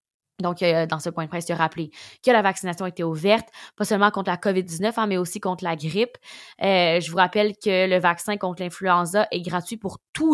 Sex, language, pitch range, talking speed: female, French, 180-225 Hz, 225 wpm